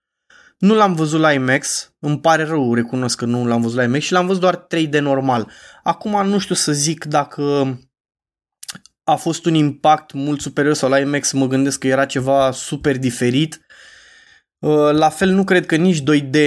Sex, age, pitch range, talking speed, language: male, 20-39, 130-155 Hz, 180 wpm, Romanian